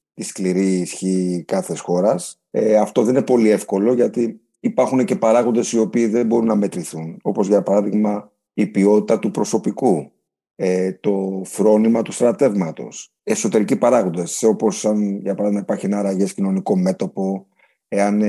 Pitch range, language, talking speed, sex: 95-120 Hz, Greek, 140 wpm, male